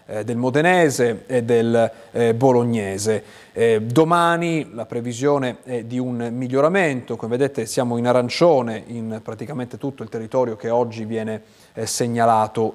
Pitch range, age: 120-160 Hz, 30-49